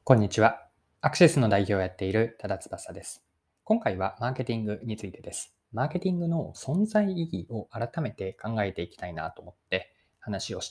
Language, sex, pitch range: Japanese, male, 100-165 Hz